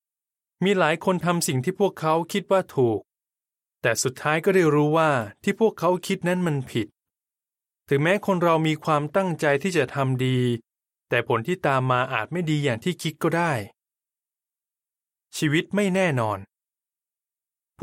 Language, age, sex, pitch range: Thai, 20-39, male, 130-175 Hz